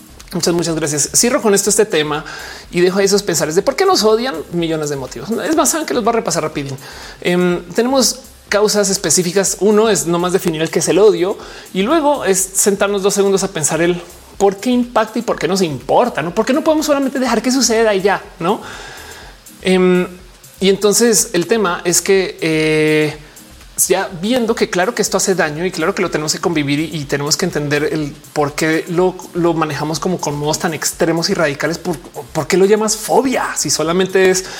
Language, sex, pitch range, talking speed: Spanish, male, 160-215 Hz, 210 wpm